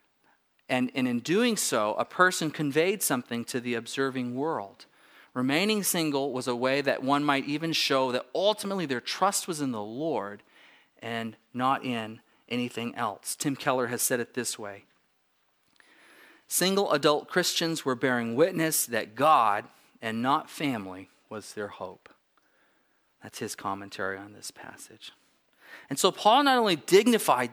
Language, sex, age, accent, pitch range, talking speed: English, male, 40-59, American, 120-165 Hz, 150 wpm